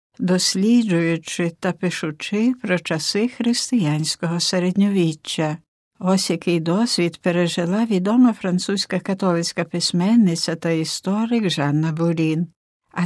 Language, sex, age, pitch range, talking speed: Ukrainian, female, 60-79, 175-230 Hz, 90 wpm